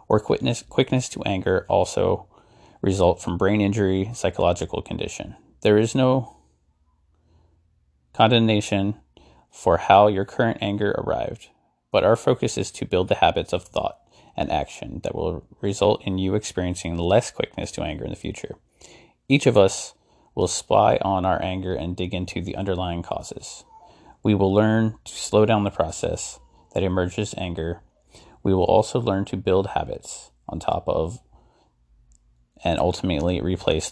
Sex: male